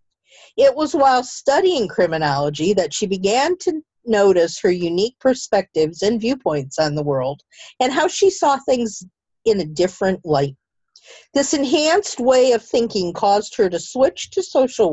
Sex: female